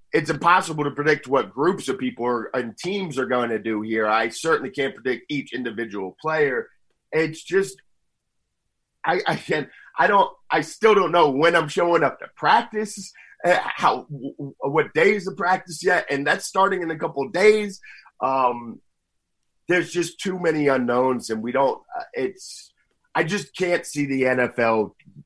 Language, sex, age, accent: English, male, 30-49, American